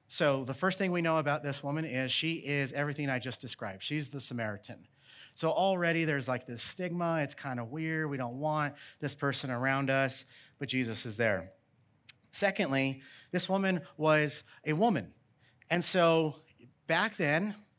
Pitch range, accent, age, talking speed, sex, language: 130-165 Hz, American, 30-49, 170 wpm, male, English